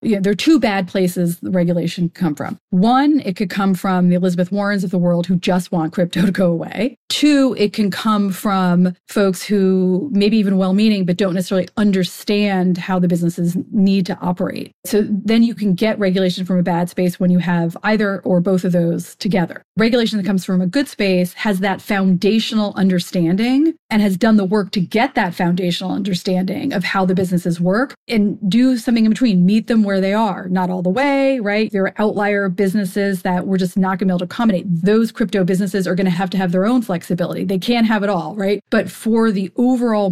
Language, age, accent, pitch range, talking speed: English, 30-49, American, 185-220 Hz, 215 wpm